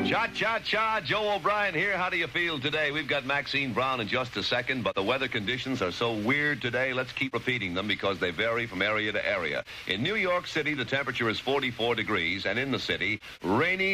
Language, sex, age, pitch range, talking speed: English, male, 60-79, 110-140 Hz, 215 wpm